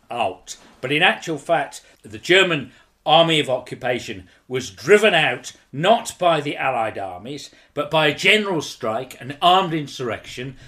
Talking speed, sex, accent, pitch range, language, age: 140 wpm, male, British, 135-190 Hz, English, 50-69